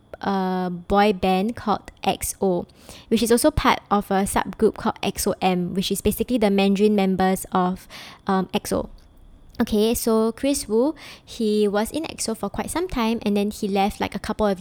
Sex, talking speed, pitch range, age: male, 175 wpm, 195-235 Hz, 10-29